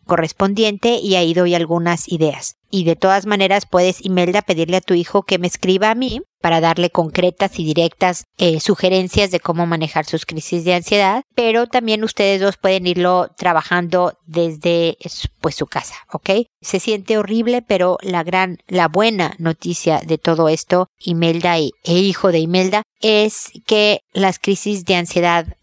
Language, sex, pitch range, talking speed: Spanish, female, 170-205 Hz, 165 wpm